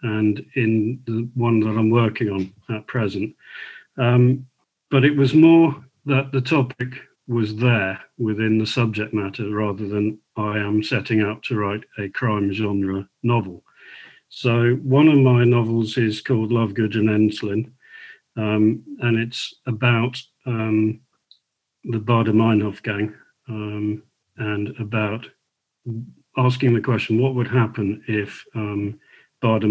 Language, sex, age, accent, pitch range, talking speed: English, male, 50-69, British, 105-120 Hz, 135 wpm